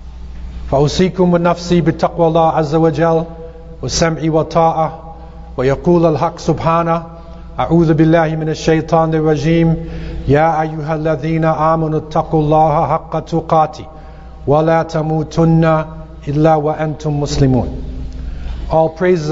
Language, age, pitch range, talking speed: English, 50-69, 135-165 Hz, 80 wpm